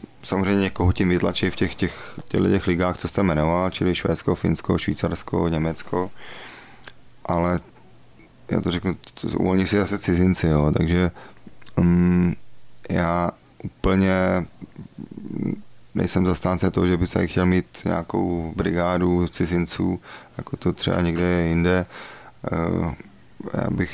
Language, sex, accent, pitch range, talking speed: Czech, male, native, 85-90 Hz, 130 wpm